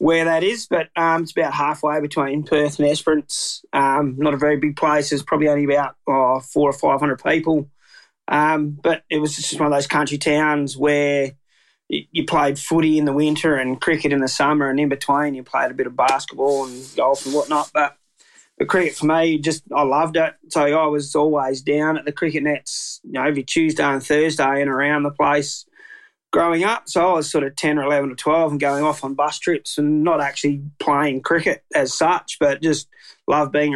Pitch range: 145-160 Hz